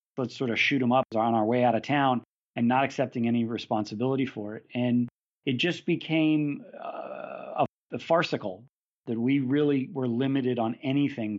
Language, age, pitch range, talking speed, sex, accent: English, 40-59, 115-135 Hz, 170 wpm, male, American